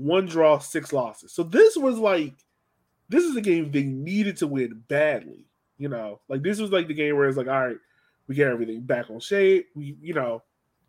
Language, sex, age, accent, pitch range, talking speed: English, male, 20-39, American, 130-185 Hz, 215 wpm